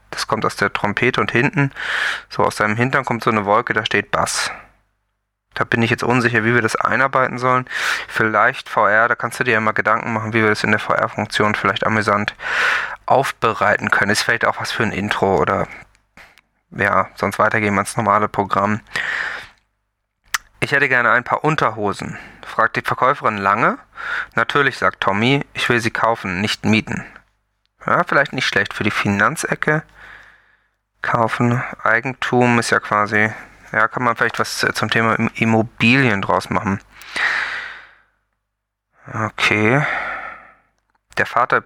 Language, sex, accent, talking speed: German, male, German, 155 wpm